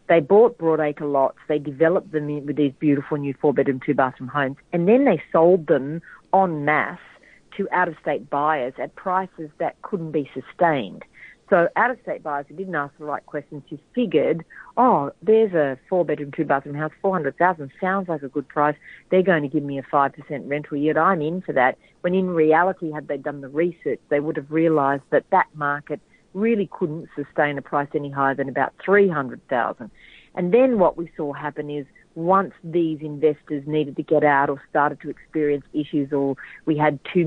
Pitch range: 140-175 Hz